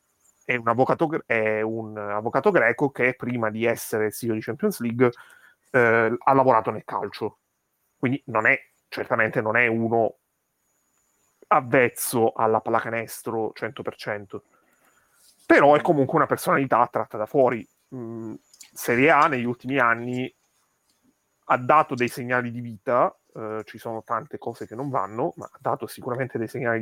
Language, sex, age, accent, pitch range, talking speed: Italian, male, 30-49, native, 115-130 Hz, 150 wpm